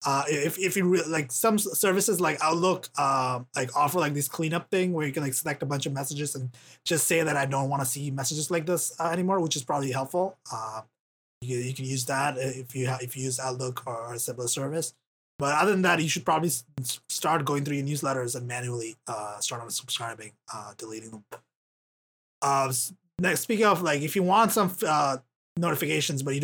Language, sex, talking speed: English, male, 220 wpm